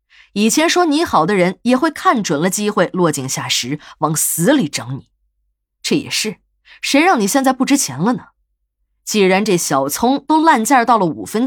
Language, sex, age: Chinese, female, 20-39